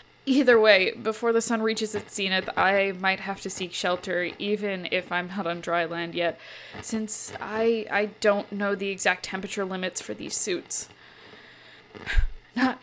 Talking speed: 165 wpm